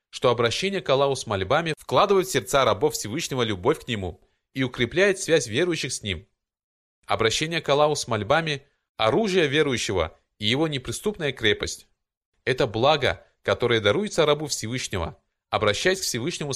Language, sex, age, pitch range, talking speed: Russian, male, 20-39, 110-160 Hz, 150 wpm